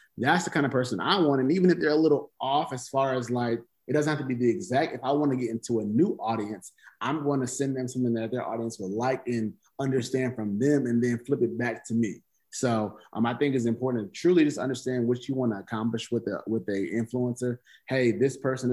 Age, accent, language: 20-39, American, English